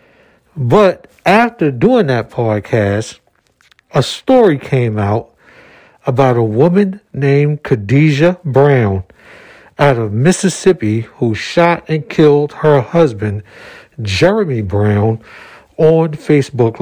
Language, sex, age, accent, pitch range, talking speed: English, male, 60-79, American, 120-165 Hz, 100 wpm